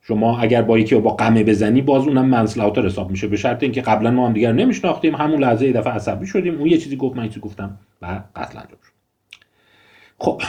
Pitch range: 100-145 Hz